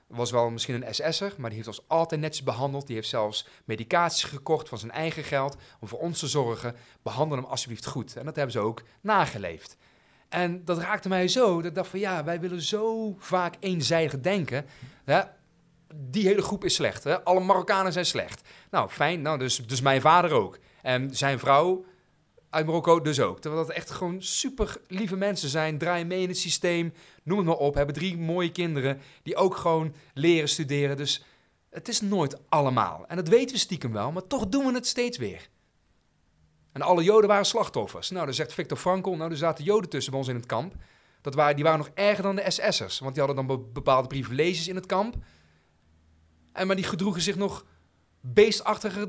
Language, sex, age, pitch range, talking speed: Dutch, male, 40-59, 135-190 Hz, 200 wpm